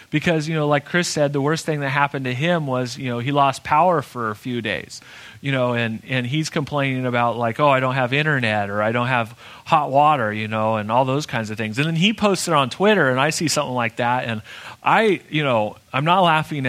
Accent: American